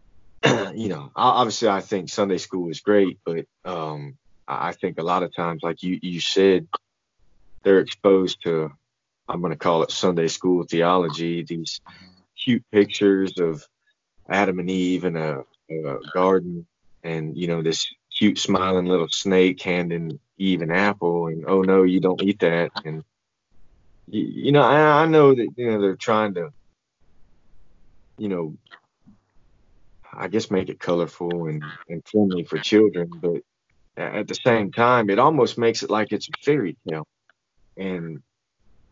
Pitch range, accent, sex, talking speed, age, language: 85-100 Hz, American, male, 160 wpm, 20-39, English